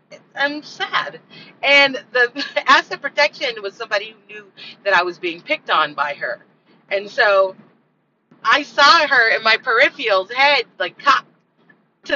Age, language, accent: 30-49, English, American